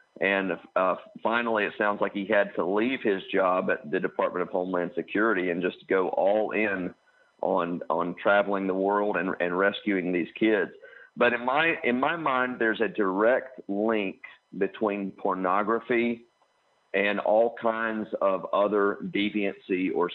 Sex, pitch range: male, 100-115 Hz